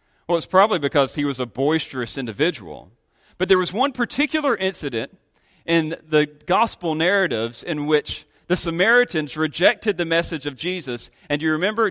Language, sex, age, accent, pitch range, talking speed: English, male, 40-59, American, 145-235 Hz, 155 wpm